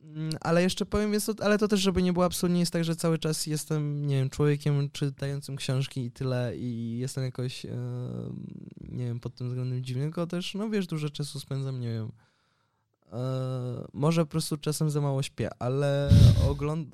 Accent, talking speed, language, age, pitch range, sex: native, 190 wpm, Polish, 20-39, 130-155 Hz, male